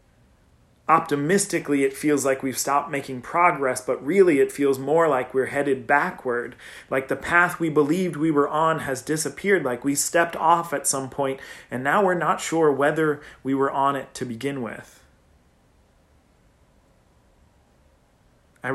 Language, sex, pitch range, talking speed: English, male, 120-150 Hz, 155 wpm